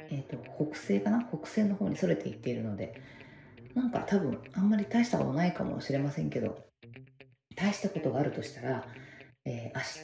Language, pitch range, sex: Japanese, 120-155 Hz, female